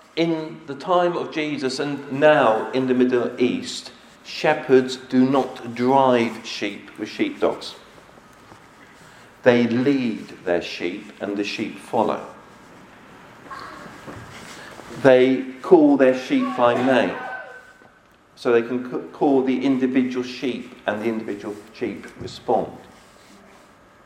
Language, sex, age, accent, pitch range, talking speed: English, male, 50-69, British, 110-135 Hz, 110 wpm